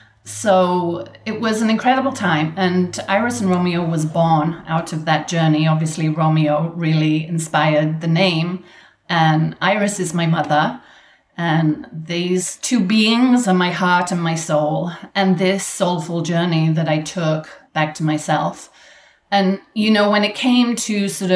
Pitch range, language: 160-195 Hz, English